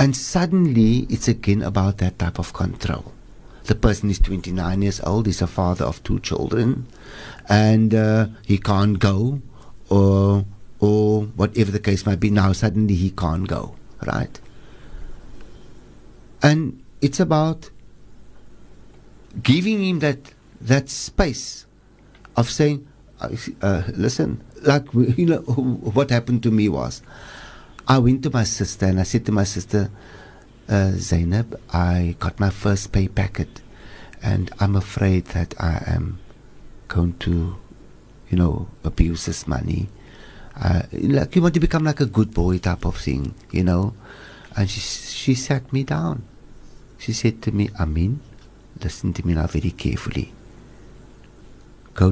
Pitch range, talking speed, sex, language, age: 95-125 Hz, 145 wpm, male, English, 60-79